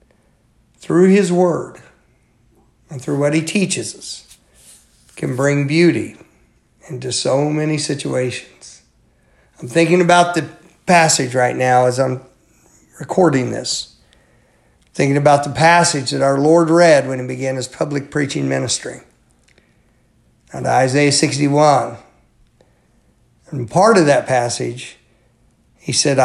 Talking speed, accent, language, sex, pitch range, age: 120 wpm, American, English, male, 125-160 Hz, 50-69